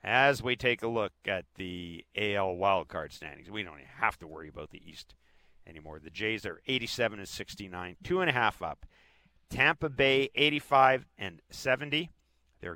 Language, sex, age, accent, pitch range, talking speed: English, male, 50-69, American, 80-115 Hz, 175 wpm